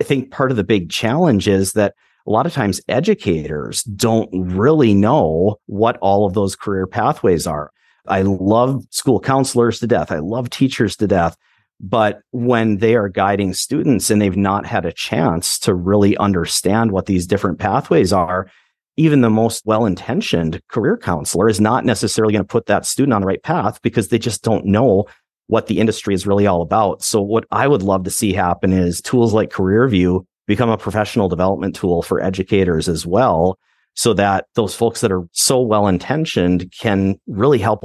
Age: 40-59